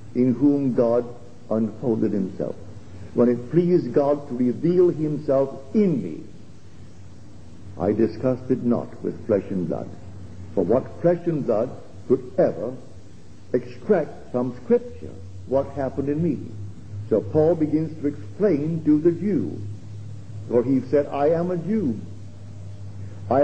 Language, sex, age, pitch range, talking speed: English, male, 60-79, 105-150 Hz, 130 wpm